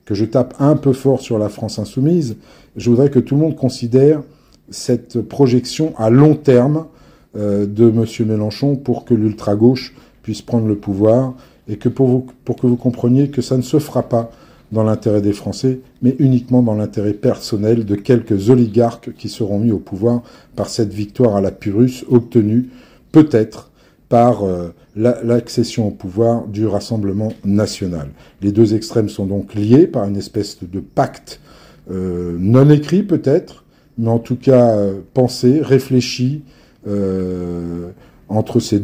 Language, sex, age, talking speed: French, male, 50-69, 160 wpm